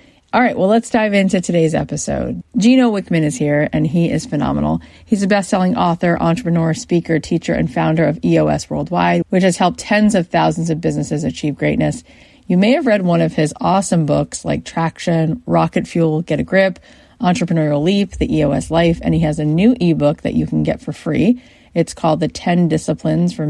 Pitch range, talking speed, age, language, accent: 150-190 Hz, 195 wpm, 30-49, English, American